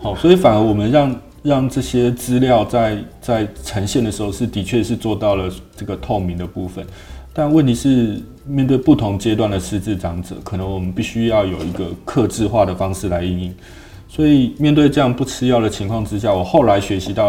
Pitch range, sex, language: 95-115 Hz, male, Chinese